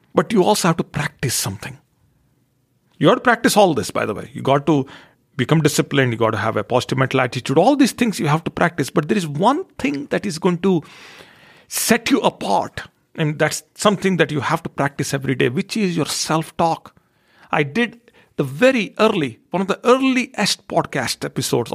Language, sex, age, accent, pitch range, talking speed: English, male, 50-69, Indian, 130-195 Hz, 200 wpm